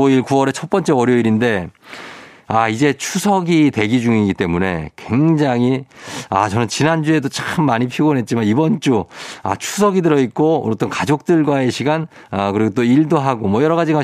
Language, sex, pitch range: Korean, male, 110-170 Hz